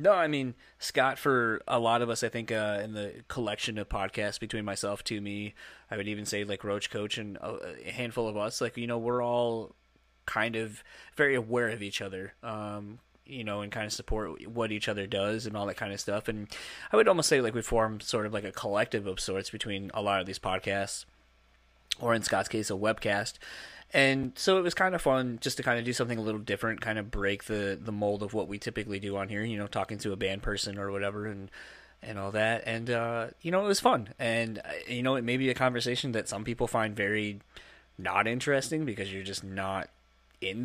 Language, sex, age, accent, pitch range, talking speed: English, male, 20-39, American, 100-120 Hz, 235 wpm